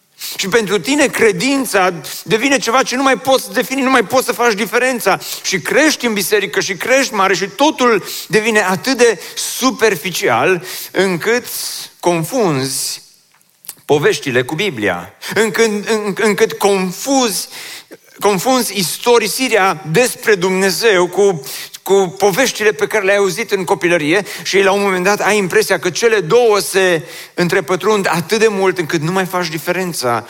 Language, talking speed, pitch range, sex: Romanian, 145 wpm, 165-225 Hz, male